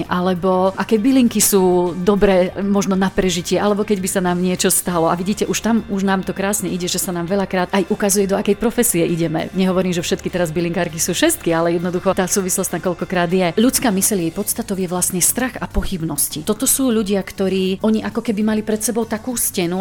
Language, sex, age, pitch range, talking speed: Slovak, female, 40-59, 175-215 Hz, 210 wpm